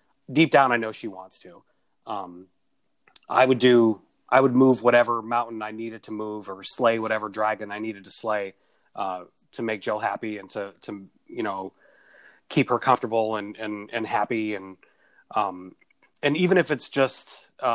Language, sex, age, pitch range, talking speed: English, male, 30-49, 105-135 Hz, 180 wpm